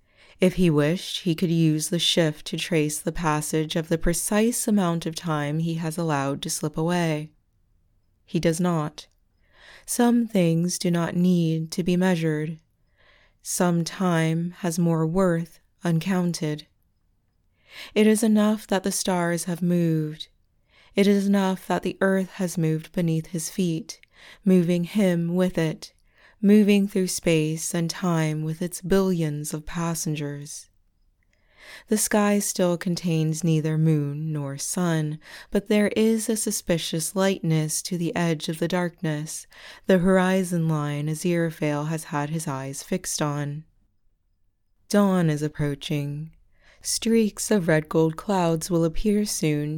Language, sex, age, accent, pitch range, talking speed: English, female, 20-39, American, 150-185 Hz, 140 wpm